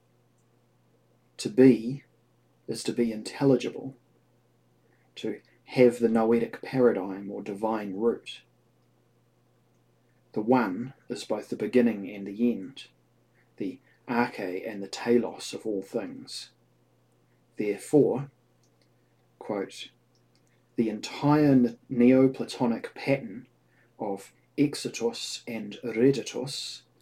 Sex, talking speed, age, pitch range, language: male, 90 wpm, 30-49, 100-125 Hz, English